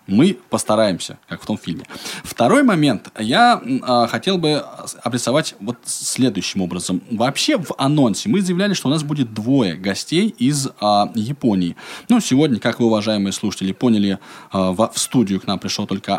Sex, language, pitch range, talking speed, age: male, Russian, 110-170 Hz, 150 wpm, 20-39